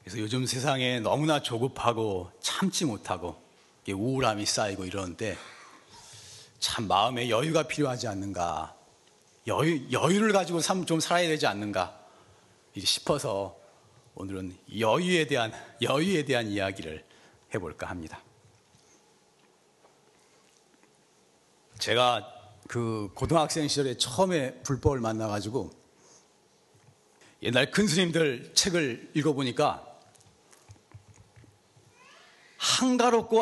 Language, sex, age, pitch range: Korean, male, 40-59, 110-180 Hz